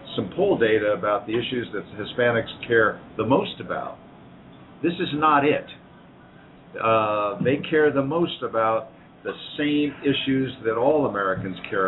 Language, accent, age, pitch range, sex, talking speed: English, American, 50-69, 115-160 Hz, male, 145 wpm